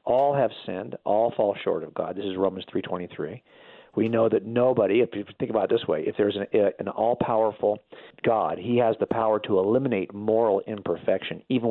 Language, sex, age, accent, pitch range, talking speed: English, male, 50-69, American, 105-135 Hz, 195 wpm